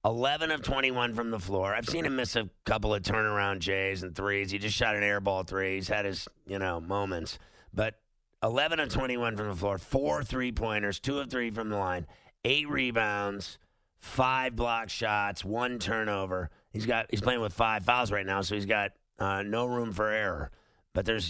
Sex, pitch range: male, 100-125 Hz